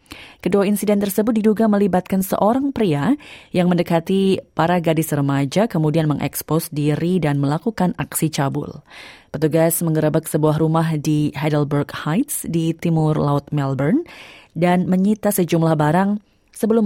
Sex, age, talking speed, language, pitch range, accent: female, 30-49, 125 wpm, Indonesian, 150-200 Hz, native